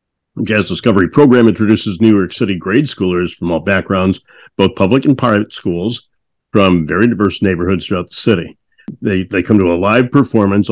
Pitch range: 95-115 Hz